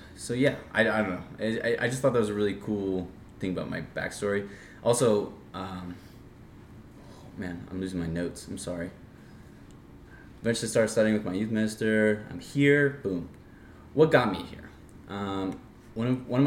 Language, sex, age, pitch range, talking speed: English, male, 20-39, 90-110 Hz, 175 wpm